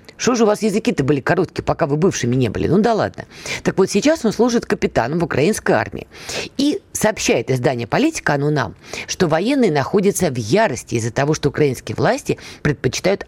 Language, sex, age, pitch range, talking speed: Russian, female, 20-39, 130-220 Hz, 185 wpm